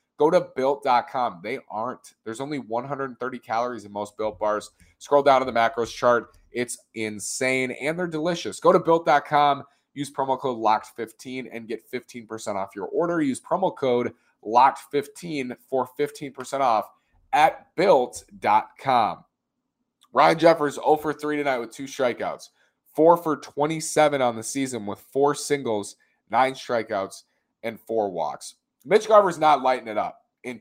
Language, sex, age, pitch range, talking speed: English, male, 30-49, 110-150 Hz, 150 wpm